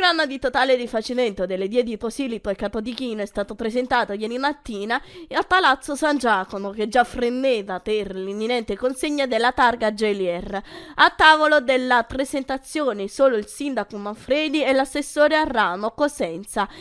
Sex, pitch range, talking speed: female, 215-295 Hz, 145 wpm